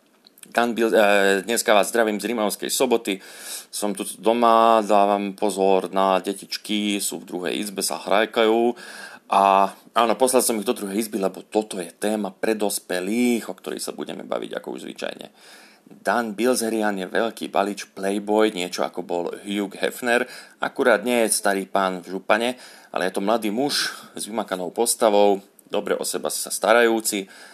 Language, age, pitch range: Slovak, 40-59, 95-115 Hz